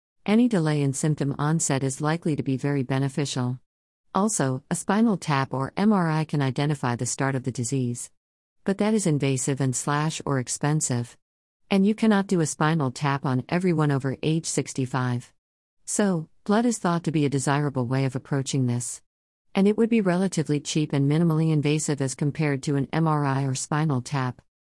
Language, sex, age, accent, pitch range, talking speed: English, female, 50-69, American, 130-160 Hz, 175 wpm